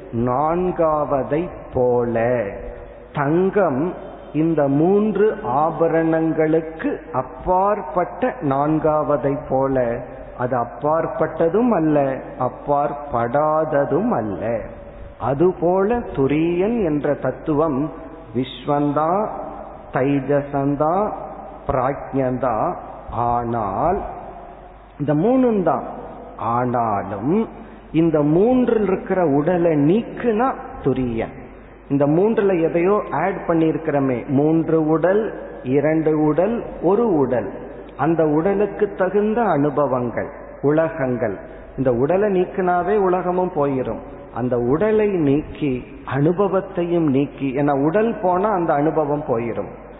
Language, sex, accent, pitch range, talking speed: Tamil, male, native, 135-180 Hz, 75 wpm